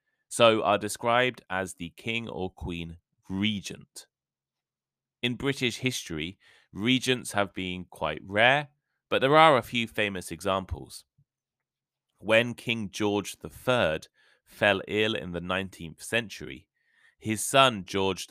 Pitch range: 90-120 Hz